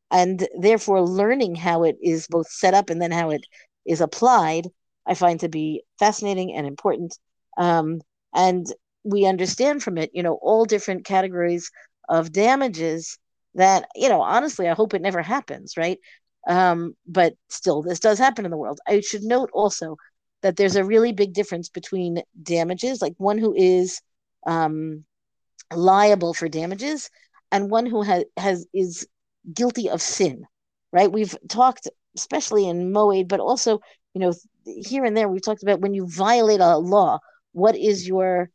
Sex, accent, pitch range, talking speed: female, American, 170-215 Hz, 165 wpm